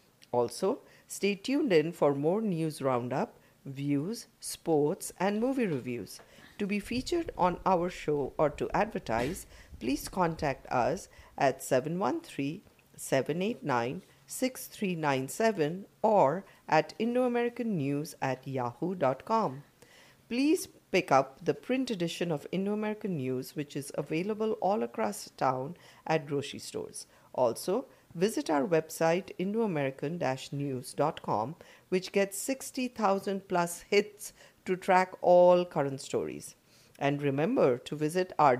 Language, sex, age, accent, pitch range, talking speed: English, female, 50-69, Indian, 140-200 Hz, 115 wpm